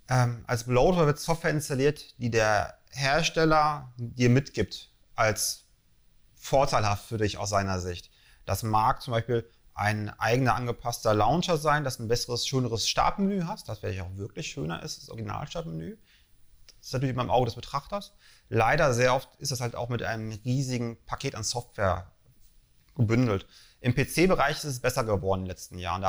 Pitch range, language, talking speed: 105-135 Hz, German, 165 wpm